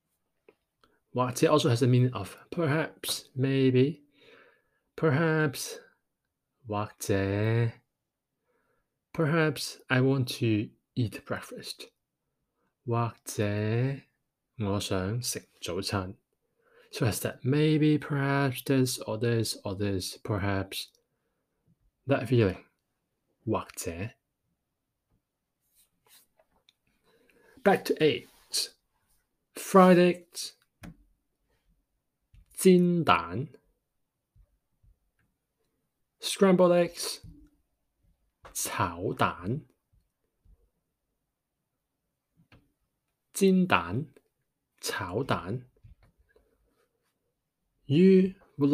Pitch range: 115-160 Hz